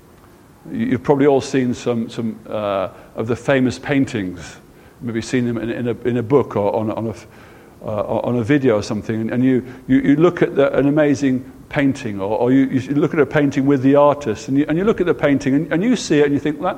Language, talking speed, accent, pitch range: English, 245 wpm, British, 125-150 Hz